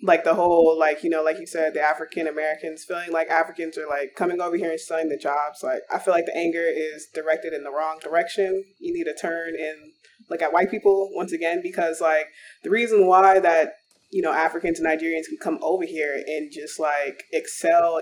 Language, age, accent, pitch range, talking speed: English, 20-39, American, 160-200 Hz, 215 wpm